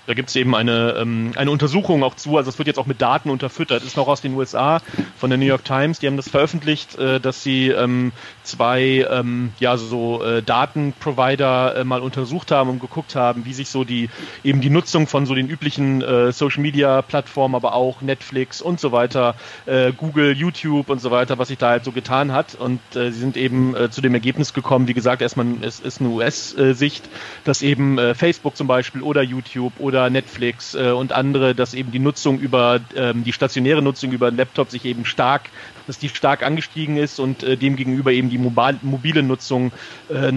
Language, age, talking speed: English, 40-59, 215 wpm